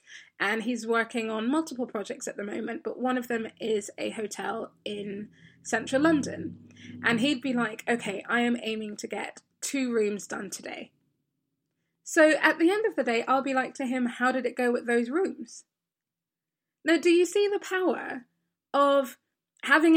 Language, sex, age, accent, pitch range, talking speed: English, female, 20-39, British, 235-310 Hz, 180 wpm